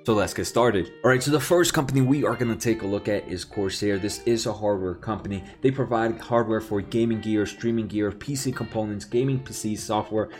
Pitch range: 110-130 Hz